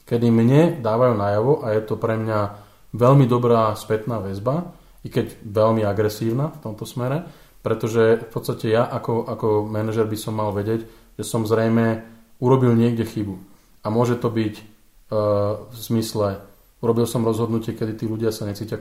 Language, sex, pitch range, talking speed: Slovak, male, 110-120 Hz, 165 wpm